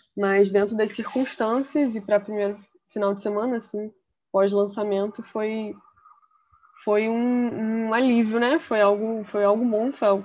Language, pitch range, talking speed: Portuguese, 195-235 Hz, 160 wpm